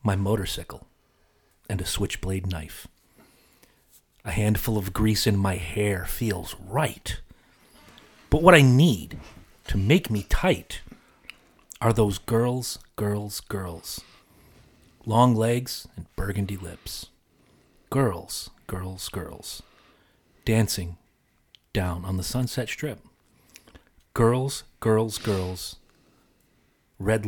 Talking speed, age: 100 wpm, 40-59